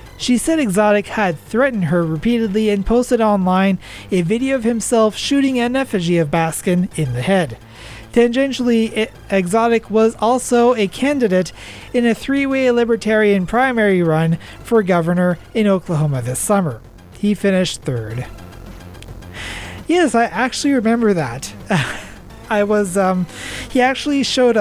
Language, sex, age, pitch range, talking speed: English, male, 30-49, 135-220 Hz, 130 wpm